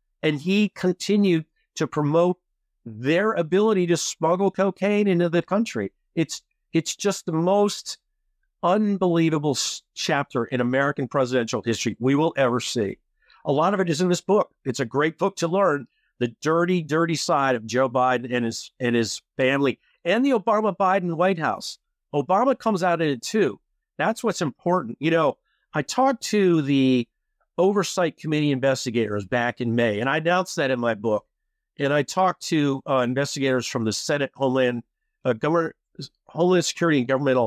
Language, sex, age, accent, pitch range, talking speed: English, male, 50-69, American, 130-185 Hz, 170 wpm